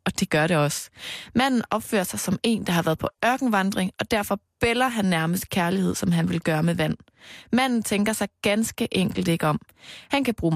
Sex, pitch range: female, 175-235 Hz